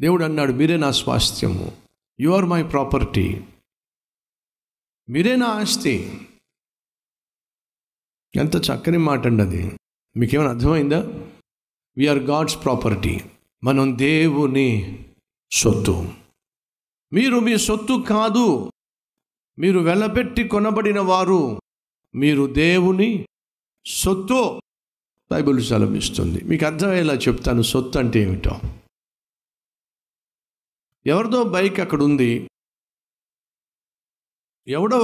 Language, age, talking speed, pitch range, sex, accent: Telugu, 50-69, 80 wpm, 125-185 Hz, male, native